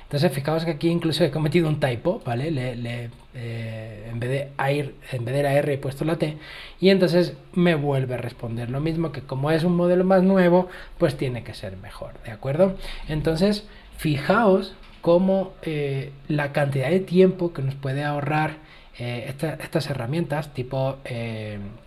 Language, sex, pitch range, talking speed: Spanish, male, 135-175 Hz, 160 wpm